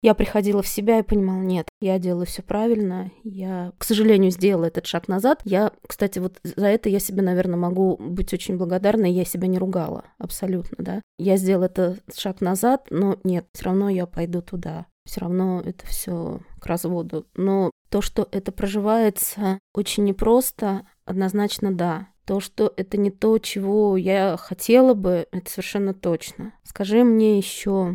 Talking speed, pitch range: 165 wpm, 180-205 Hz